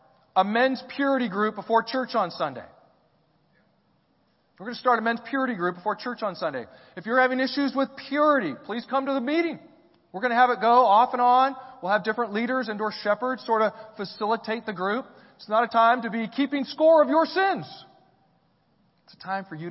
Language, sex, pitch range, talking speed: English, male, 170-235 Hz, 205 wpm